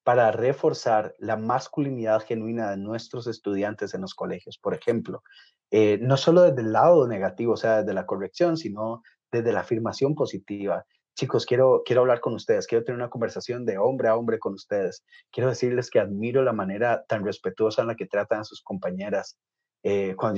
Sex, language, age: male, Spanish, 30-49